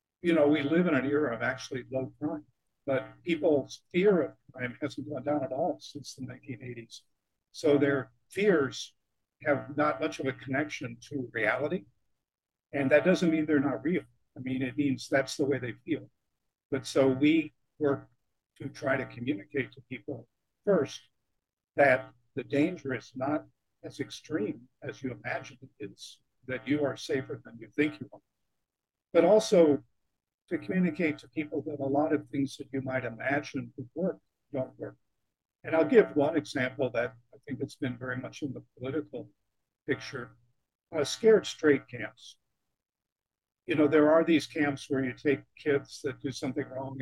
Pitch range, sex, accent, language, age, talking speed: 125-150 Hz, male, American, English, 50-69, 175 wpm